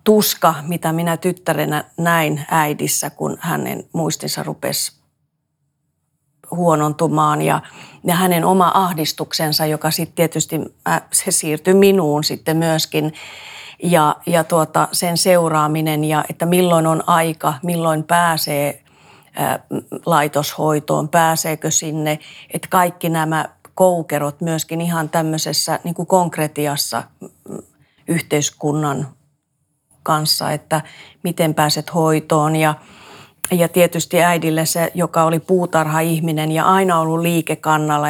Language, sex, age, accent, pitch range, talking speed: Finnish, female, 40-59, native, 150-170 Hz, 100 wpm